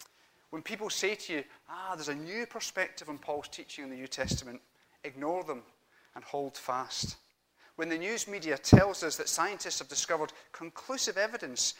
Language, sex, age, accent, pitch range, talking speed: English, male, 30-49, British, 135-180 Hz, 175 wpm